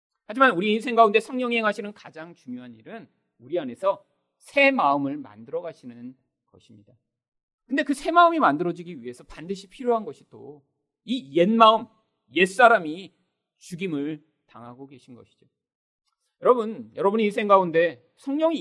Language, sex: Korean, male